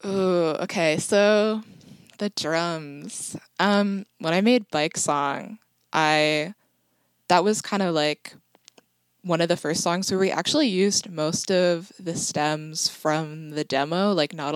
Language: English